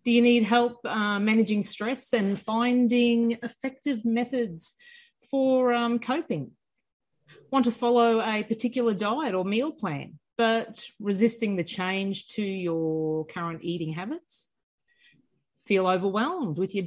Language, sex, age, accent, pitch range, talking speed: English, female, 40-59, Australian, 185-240 Hz, 130 wpm